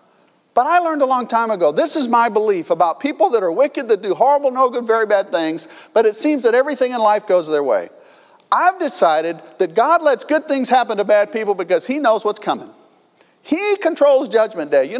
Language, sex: English, male